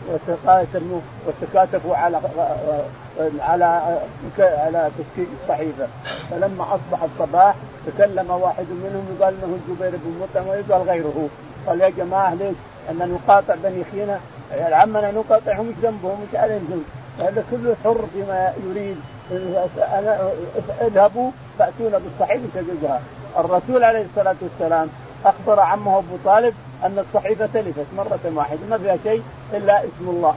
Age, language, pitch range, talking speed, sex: 50-69, Arabic, 165-205 Hz, 125 wpm, male